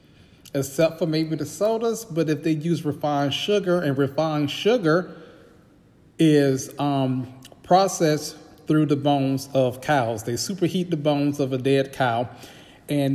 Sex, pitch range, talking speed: male, 140-170 Hz, 140 wpm